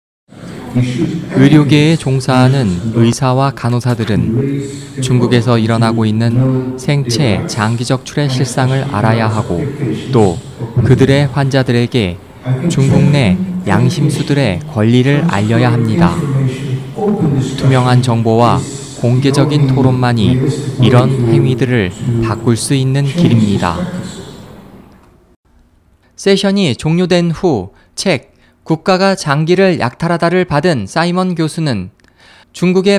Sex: male